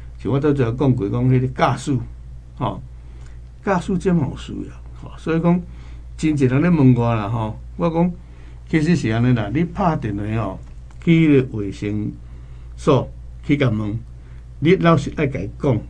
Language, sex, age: Chinese, male, 60-79